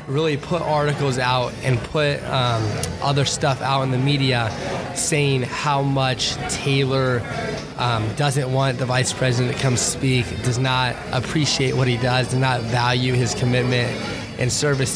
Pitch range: 125-145 Hz